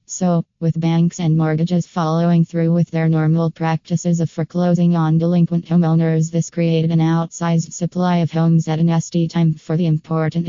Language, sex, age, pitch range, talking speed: English, female, 20-39, 165-175 Hz, 170 wpm